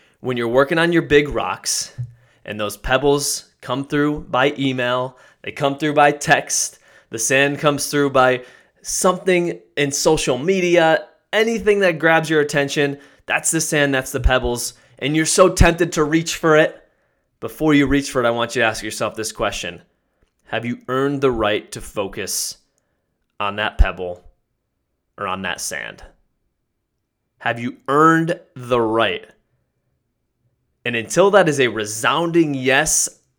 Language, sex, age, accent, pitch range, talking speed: English, male, 20-39, American, 120-155 Hz, 155 wpm